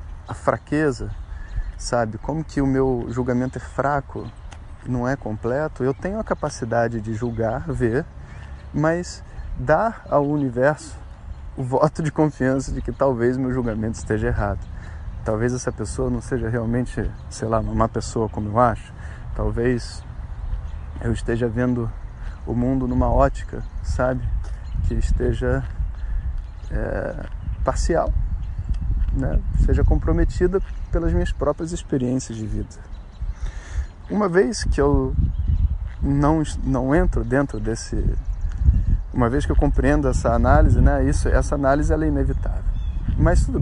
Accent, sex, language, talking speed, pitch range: Brazilian, male, Portuguese, 130 wpm, 85-130 Hz